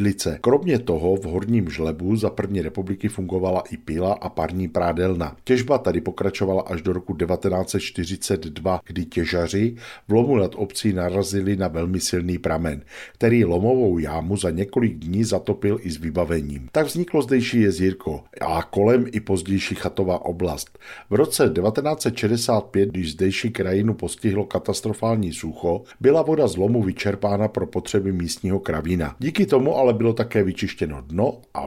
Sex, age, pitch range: male, 50-69, 85-110 Hz